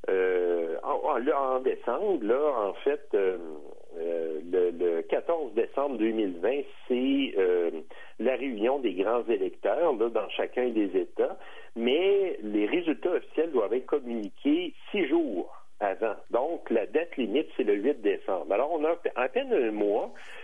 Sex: male